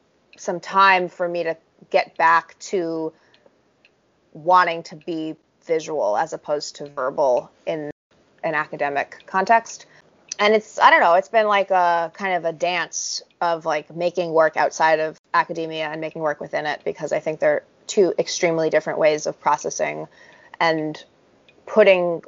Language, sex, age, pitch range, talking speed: English, female, 20-39, 150-180 Hz, 155 wpm